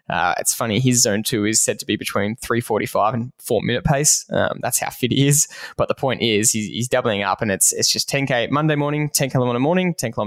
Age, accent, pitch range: 10-29, Australian, 120-150 Hz